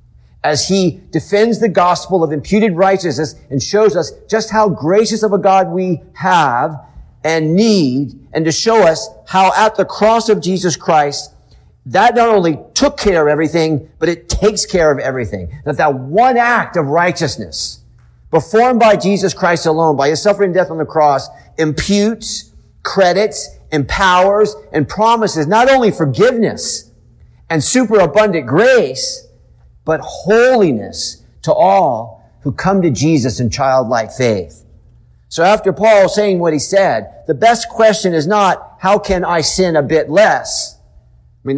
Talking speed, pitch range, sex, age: 155 wpm, 145-205 Hz, male, 50-69